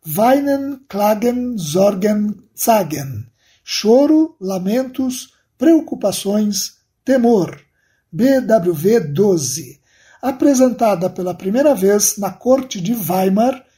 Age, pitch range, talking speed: 60-79, 190-270 Hz, 80 wpm